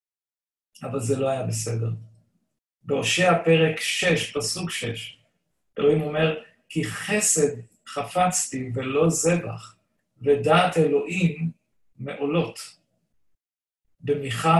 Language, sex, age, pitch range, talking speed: Hebrew, male, 50-69, 140-170 Hz, 85 wpm